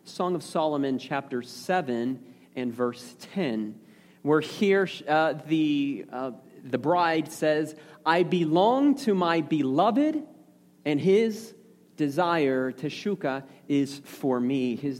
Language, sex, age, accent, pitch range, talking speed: English, male, 30-49, American, 165-230 Hz, 115 wpm